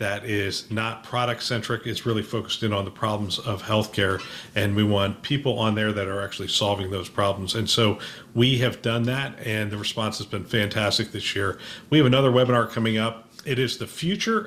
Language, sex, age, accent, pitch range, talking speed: English, male, 40-59, American, 105-125 Hz, 205 wpm